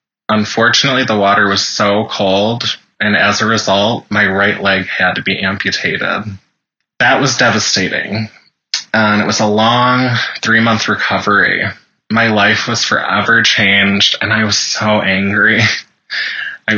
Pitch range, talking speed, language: 100-115 Hz, 135 wpm, English